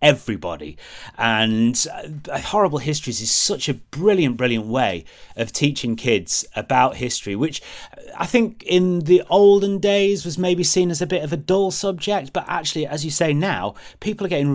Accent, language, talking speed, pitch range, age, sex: British, English, 175 wpm, 115-165 Hz, 30-49, male